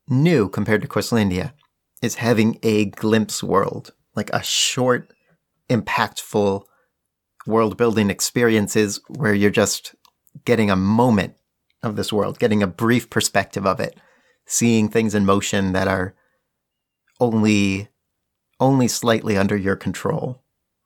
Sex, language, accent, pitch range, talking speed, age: male, English, American, 100-120 Hz, 125 wpm, 40-59